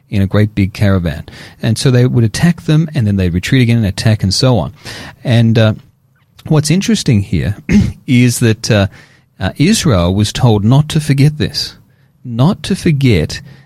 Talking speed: 175 wpm